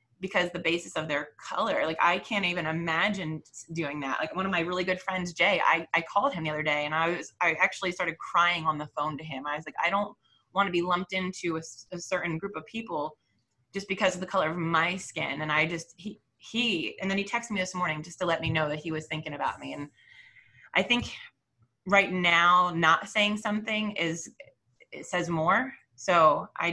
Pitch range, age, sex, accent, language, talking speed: 155-185 Hz, 20-39, female, American, English, 225 wpm